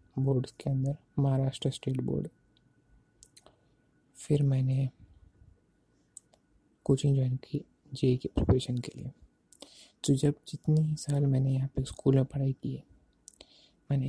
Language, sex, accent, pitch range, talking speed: English, male, Indian, 130-145 Hz, 115 wpm